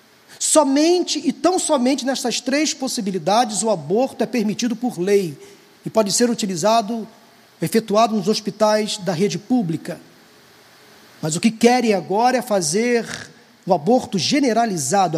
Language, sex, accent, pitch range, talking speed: Portuguese, male, Brazilian, 200-275 Hz, 130 wpm